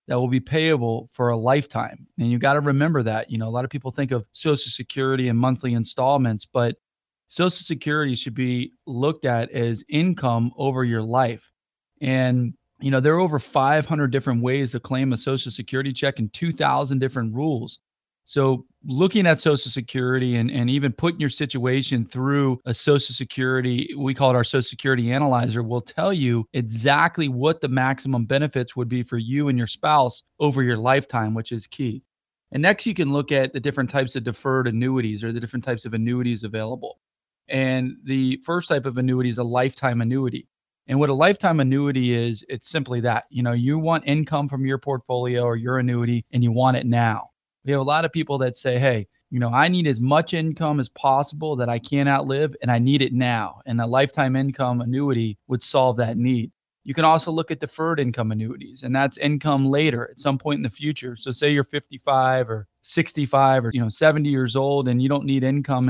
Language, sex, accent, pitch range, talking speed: English, male, American, 120-140 Hz, 205 wpm